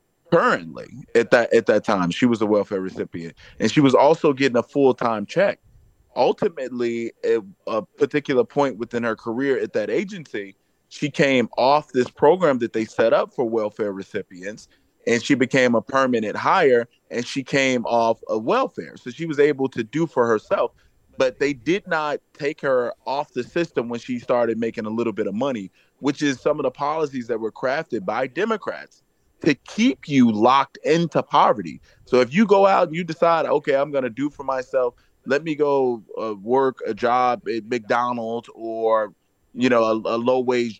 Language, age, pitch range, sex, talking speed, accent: English, 20-39, 120-170 Hz, male, 190 wpm, American